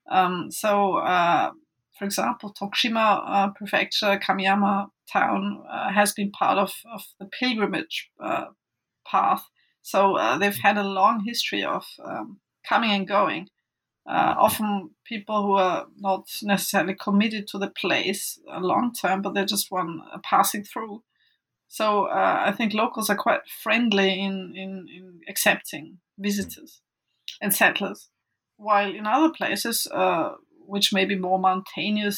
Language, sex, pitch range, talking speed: English, female, 195-220 Hz, 140 wpm